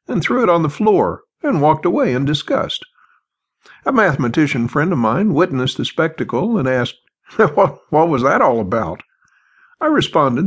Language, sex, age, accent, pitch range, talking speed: English, male, 60-79, American, 125-175 Hz, 160 wpm